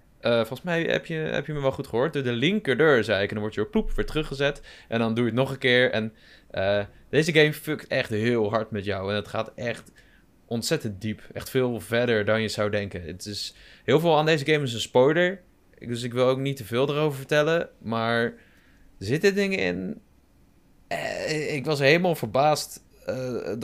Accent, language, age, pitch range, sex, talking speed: Dutch, Dutch, 20-39, 110-140 Hz, male, 215 wpm